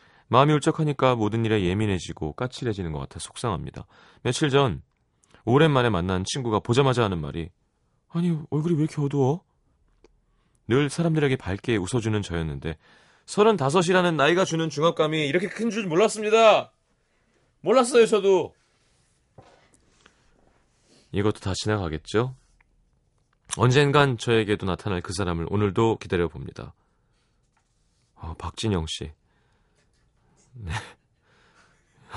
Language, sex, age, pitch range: Korean, male, 30-49, 95-145 Hz